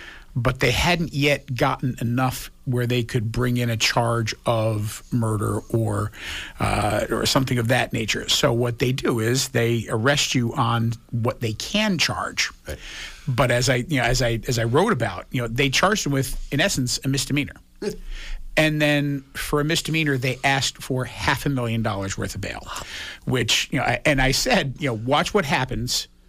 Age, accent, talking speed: 50-69, American, 190 wpm